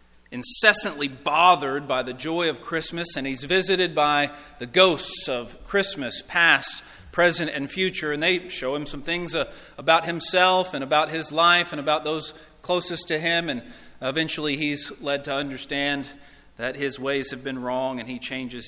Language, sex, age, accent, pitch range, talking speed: English, male, 40-59, American, 135-185 Hz, 165 wpm